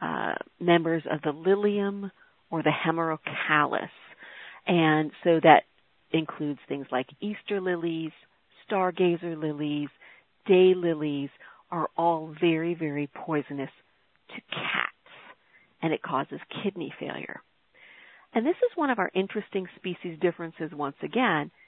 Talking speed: 120 wpm